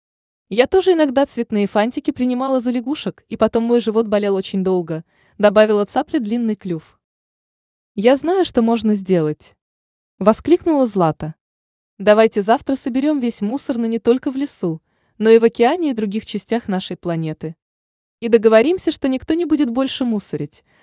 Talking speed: 155 wpm